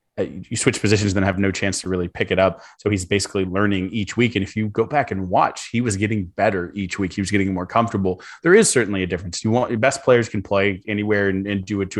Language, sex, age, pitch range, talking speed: English, male, 20-39, 95-110 Hz, 270 wpm